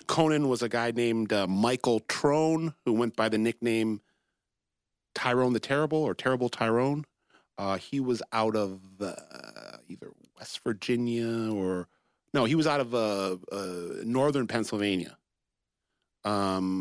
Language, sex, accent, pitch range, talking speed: English, male, American, 105-120 Hz, 145 wpm